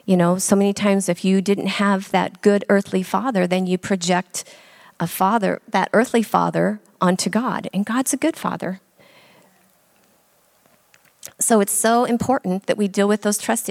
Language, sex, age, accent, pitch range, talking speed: English, female, 40-59, American, 185-220 Hz, 165 wpm